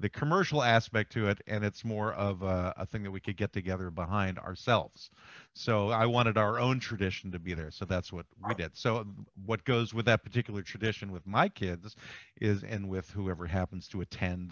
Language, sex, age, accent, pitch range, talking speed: English, male, 50-69, American, 95-125 Hz, 205 wpm